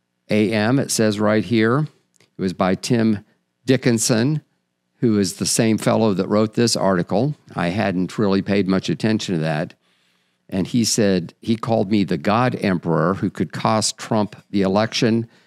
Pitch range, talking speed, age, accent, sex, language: 90-115 Hz, 165 wpm, 50-69, American, male, English